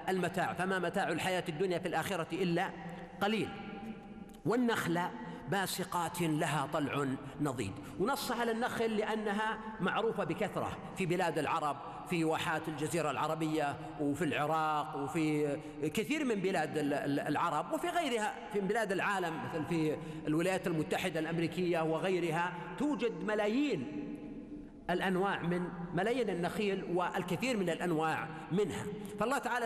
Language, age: Arabic, 50-69